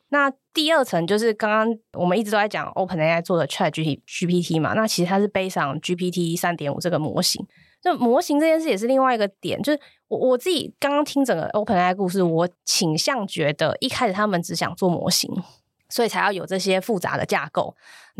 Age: 20-39